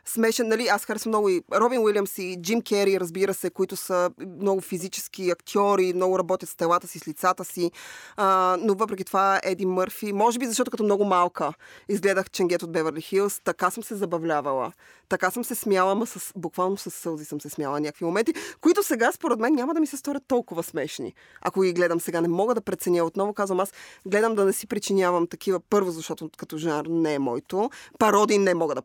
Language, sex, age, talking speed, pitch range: Bulgarian, female, 20-39, 210 wpm, 170-210 Hz